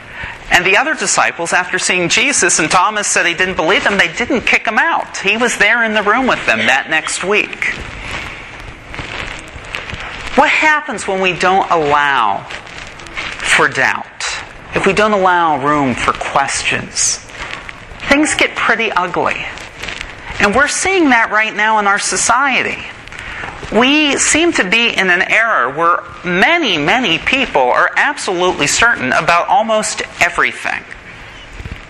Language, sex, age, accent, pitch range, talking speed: English, male, 30-49, American, 180-235 Hz, 140 wpm